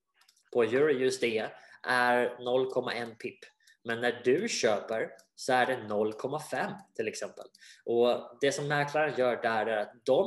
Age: 20-39